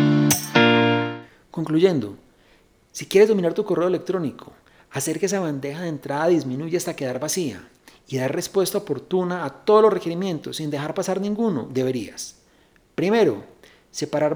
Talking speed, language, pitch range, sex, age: 135 wpm, Spanish, 135-190 Hz, male, 40-59